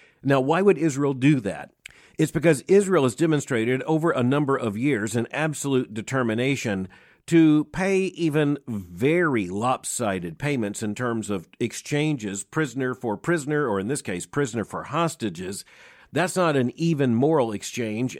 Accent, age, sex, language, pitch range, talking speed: American, 50-69, male, English, 110-145 Hz, 150 wpm